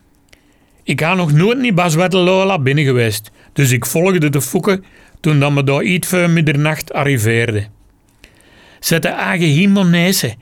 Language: Dutch